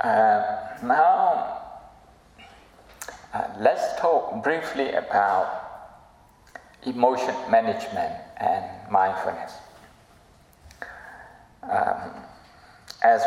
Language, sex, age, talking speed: Hungarian, male, 60-79, 60 wpm